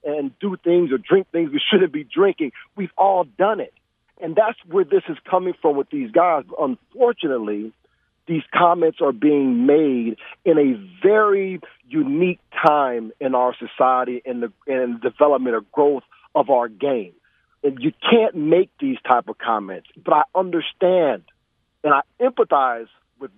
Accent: American